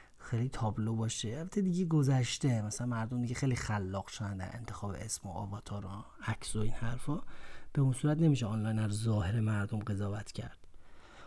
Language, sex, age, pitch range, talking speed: Persian, male, 30-49, 110-135 Hz, 165 wpm